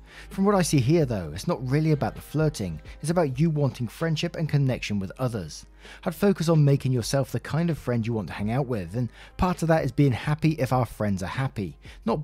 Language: English